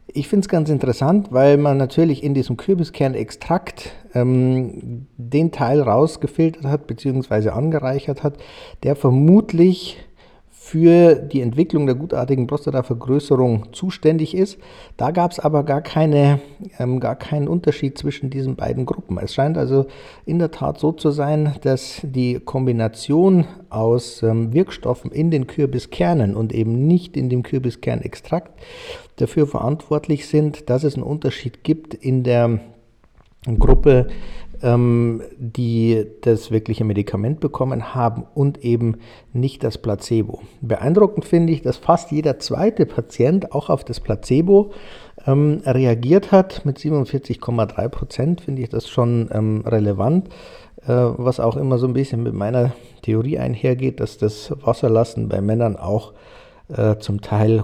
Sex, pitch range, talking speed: male, 120-150 Hz, 135 wpm